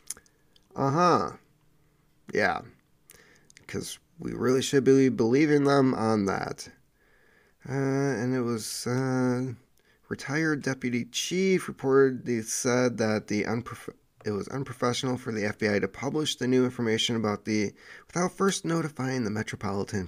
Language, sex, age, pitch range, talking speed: English, male, 30-49, 110-145 Hz, 125 wpm